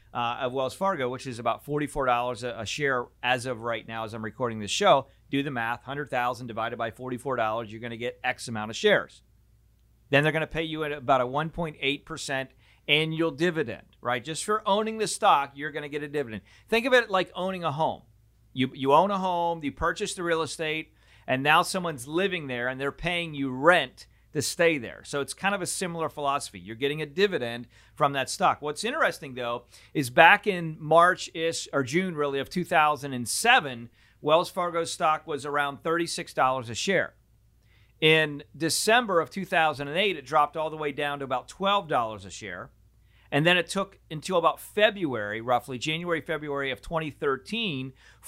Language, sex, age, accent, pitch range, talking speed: English, male, 40-59, American, 120-165 Hz, 185 wpm